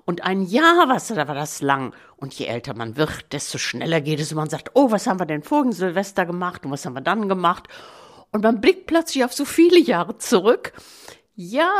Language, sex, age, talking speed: German, female, 60-79, 215 wpm